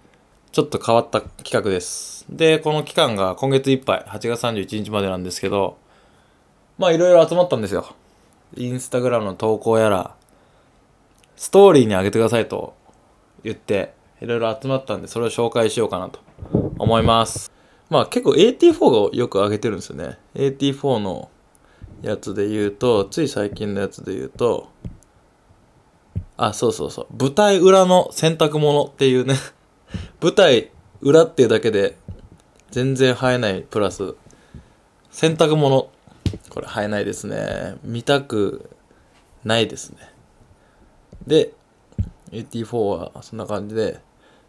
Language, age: Japanese, 20-39